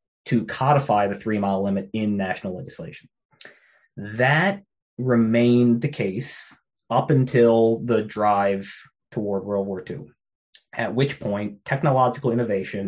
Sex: male